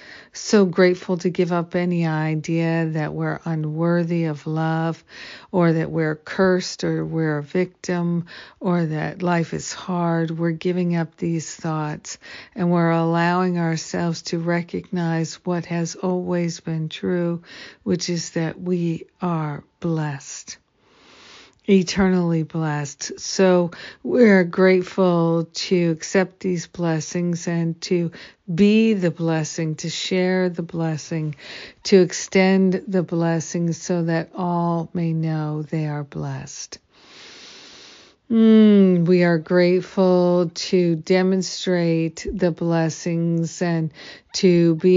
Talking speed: 115 wpm